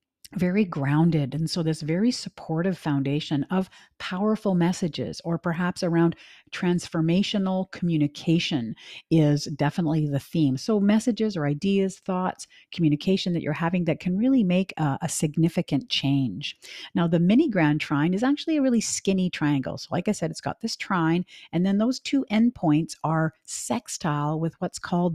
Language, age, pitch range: English, 50-69, 150-185 Hz